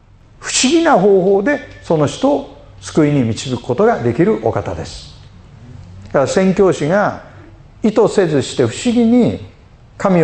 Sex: male